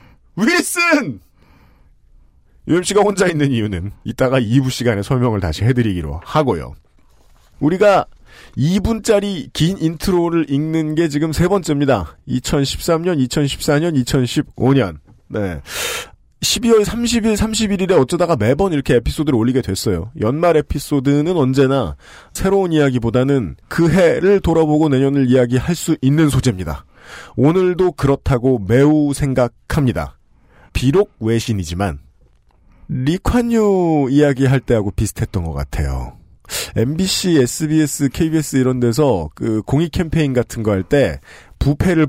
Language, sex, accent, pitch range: Korean, male, native, 110-165 Hz